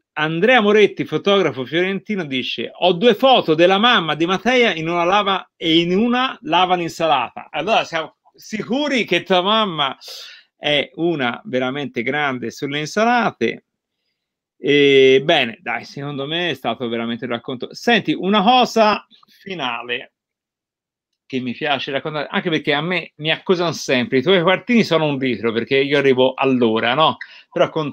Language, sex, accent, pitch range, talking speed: Italian, male, native, 130-205 Hz, 150 wpm